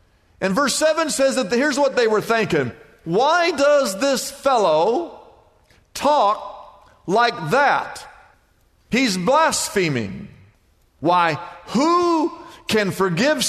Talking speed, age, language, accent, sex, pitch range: 100 wpm, 50-69, English, American, male, 180-255 Hz